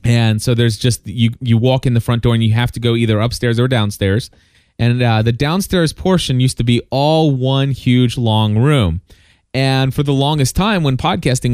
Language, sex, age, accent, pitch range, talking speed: English, male, 30-49, American, 110-130 Hz, 210 wpm